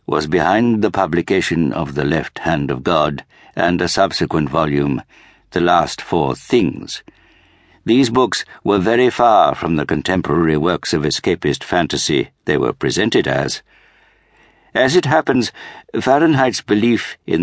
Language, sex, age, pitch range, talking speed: English, male, 60-79, 85-110 Hz, 140 wpm